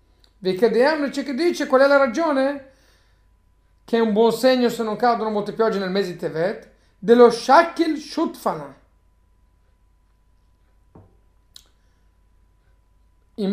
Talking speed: 120 wpm